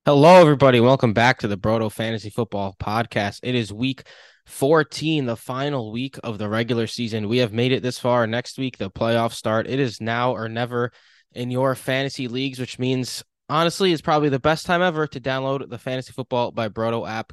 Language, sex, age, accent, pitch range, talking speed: English, male, 10-29, American, 110-125 Hz, 200 wpm